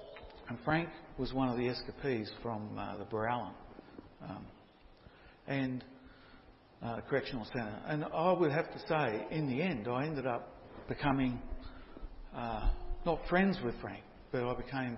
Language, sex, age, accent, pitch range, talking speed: English, male, 60-79, Australian, 120-155 Hz, 150 wpm